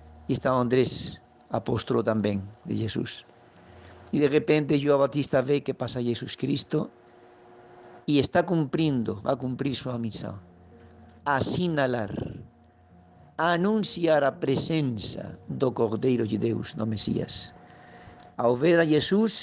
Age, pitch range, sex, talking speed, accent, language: 50-69, 110-160 Hz, male, 125 wpm, Spanish, Portuguese